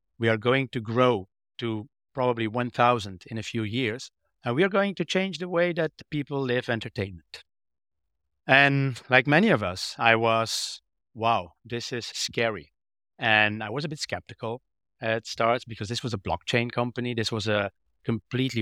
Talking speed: 170 wpm